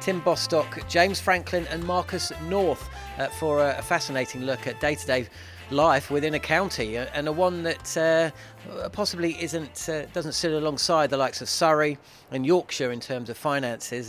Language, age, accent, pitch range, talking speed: English, 30-49, British, 130-165 Hz, 165 wpm